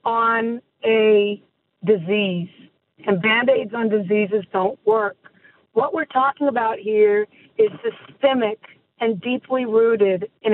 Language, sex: English, female